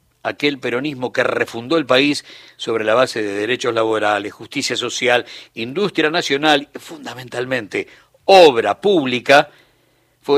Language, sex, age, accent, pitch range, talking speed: Spanish, male, 60-79, Argentinian, 115-160 Hz, 120 wpm